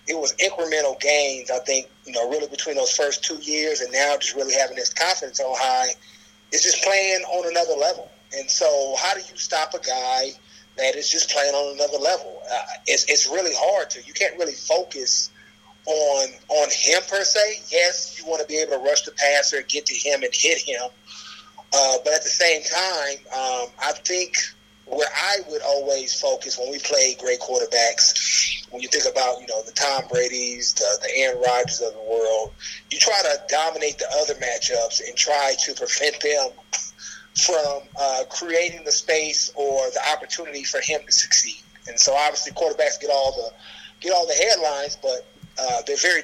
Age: 30-49